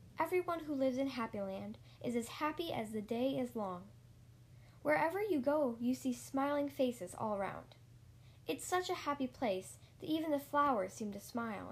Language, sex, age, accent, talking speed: English, female, 10-29, American, 175 wpm